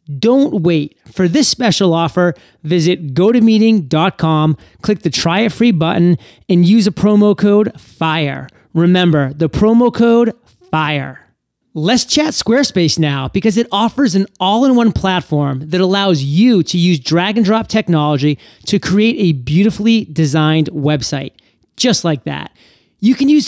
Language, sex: English, male